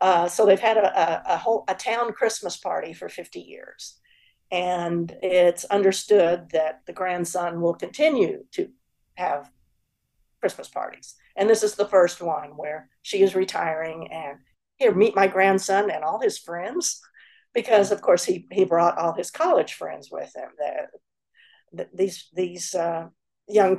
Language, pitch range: English, 175-215 Hz